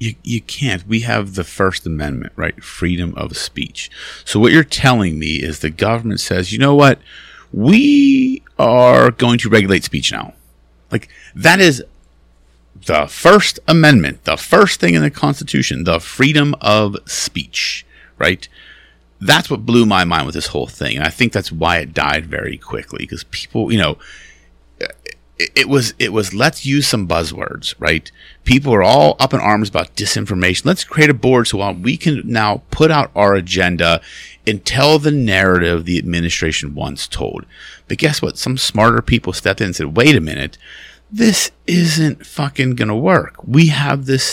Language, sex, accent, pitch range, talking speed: English, male, American, 85-135 Hz, 175 wpm